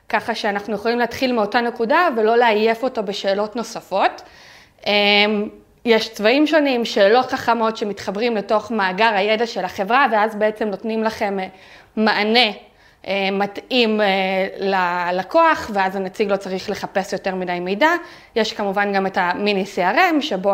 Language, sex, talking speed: Hebrew, female, 130 wpm